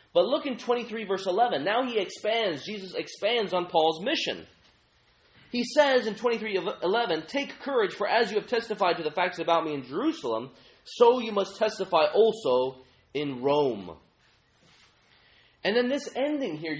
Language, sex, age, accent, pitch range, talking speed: English, male, 30-49, American, 160-230 Hz, 170 wpm